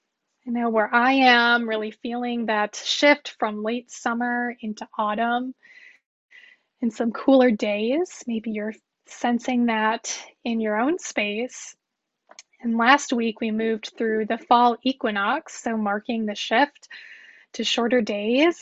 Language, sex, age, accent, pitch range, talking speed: English, female, 10-29, American, 225-270 Hz, 135 wpm